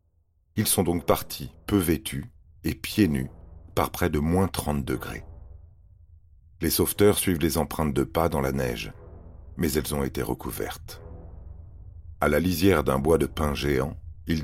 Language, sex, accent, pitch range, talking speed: French, male, French, 75-90 Hz, 160 wpm